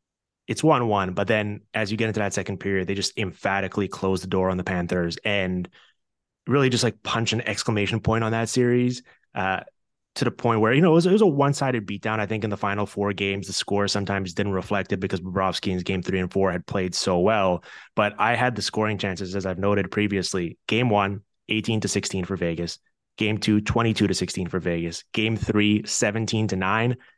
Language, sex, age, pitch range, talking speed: English, male, 20-39, 95-110 Hz, 215 wpm